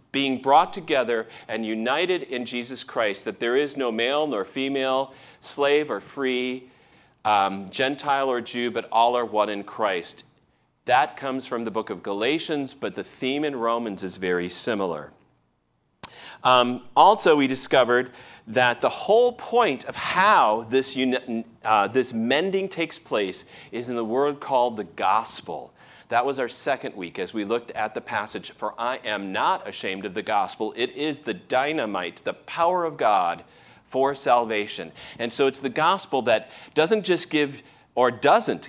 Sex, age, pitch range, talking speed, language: male, 40-59, 115-140 Hz, 165 wpm, English